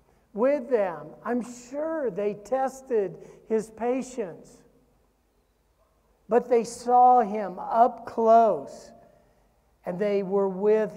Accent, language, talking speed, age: American, English, 100 wpm, 50-69